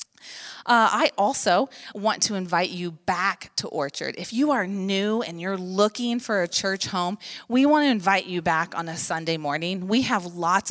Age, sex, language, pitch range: 30-49, female, English, 175-220 Hz